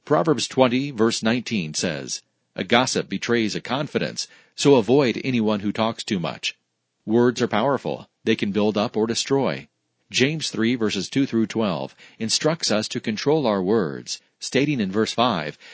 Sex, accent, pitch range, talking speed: male, American, 105-130 Hz, 160 wpm